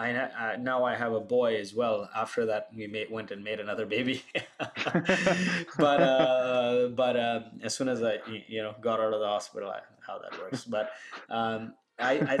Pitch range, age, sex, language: 115-140 Hz, 20-39, male, English